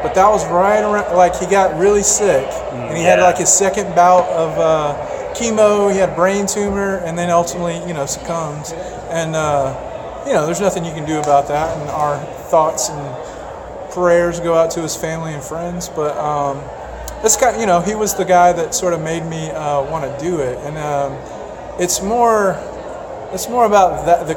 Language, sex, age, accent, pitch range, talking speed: English, male, 30-49, American, 155-190 Hz, 200 wpm